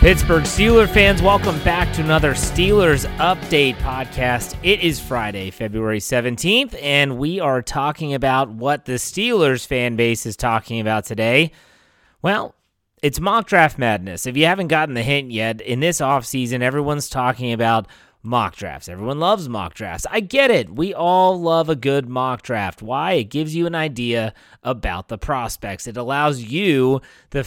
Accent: American